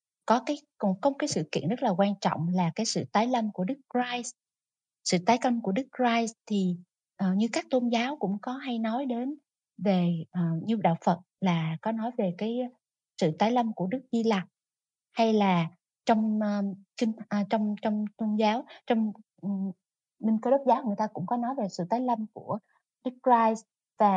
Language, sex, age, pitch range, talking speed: Vietnamese, female, 20-39, 185-240 Hz, 190 wpm